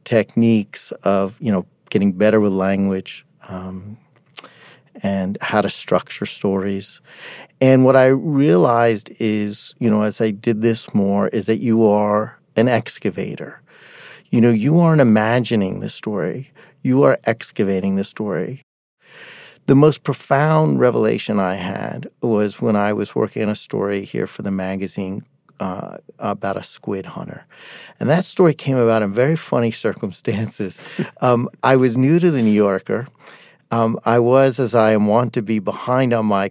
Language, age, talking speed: English, 50-69, 160 wpm